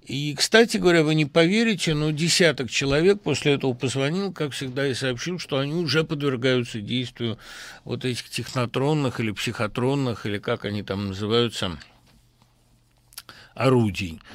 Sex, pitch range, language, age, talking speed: male, 120-170 Hz, Russian, 60-79, 135 wpm